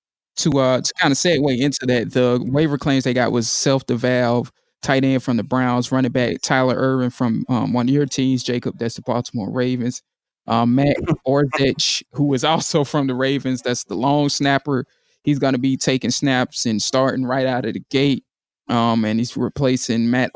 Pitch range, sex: 120-135 Hz, male